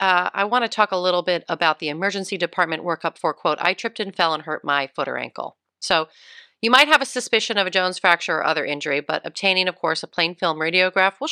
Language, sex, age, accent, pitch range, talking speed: English, female, 40-59, American, 165-215 Hz, 250 wpm